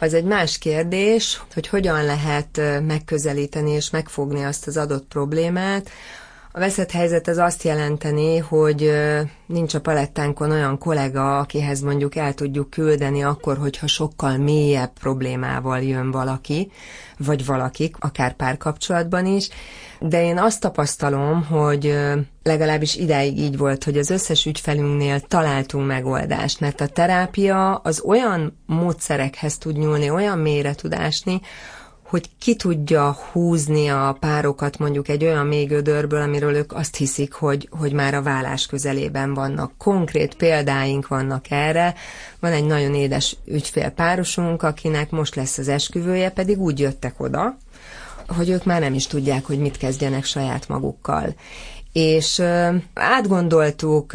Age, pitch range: 30-49, 145-170 Hz